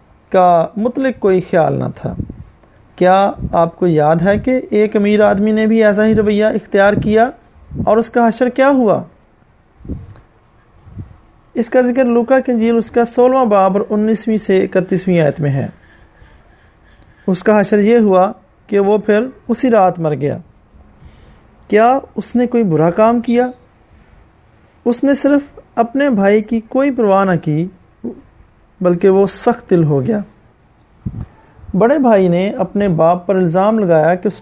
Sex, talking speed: male, 150 wpm